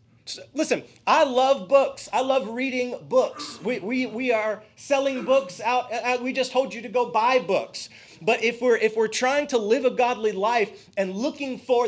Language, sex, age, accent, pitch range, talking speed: English, male, 30-49, American, 215-270 Hz, 185 wpm